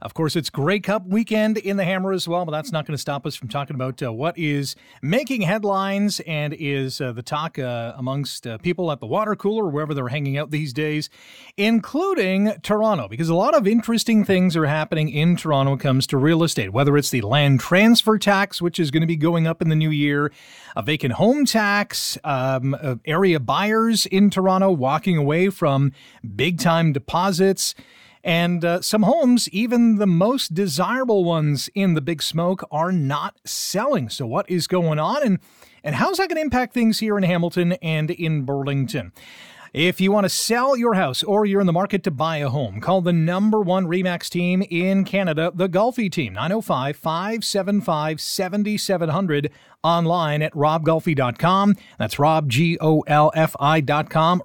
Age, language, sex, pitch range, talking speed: 40-59, English, male, 150-200 Hz, 180 wpm